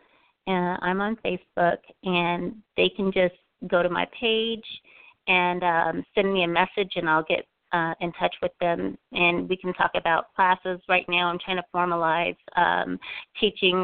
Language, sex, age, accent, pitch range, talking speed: English, female, 30-49, American, 170-185 Hz, 170 wpm